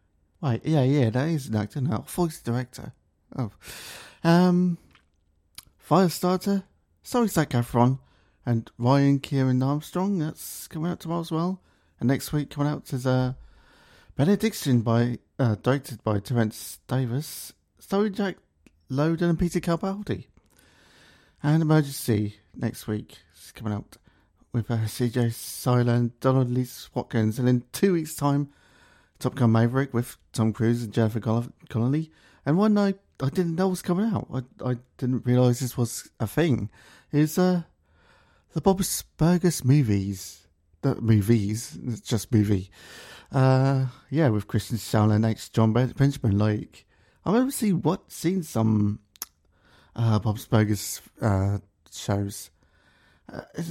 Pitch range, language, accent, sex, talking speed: 110-155 Hz, English, British, male, 140 wpm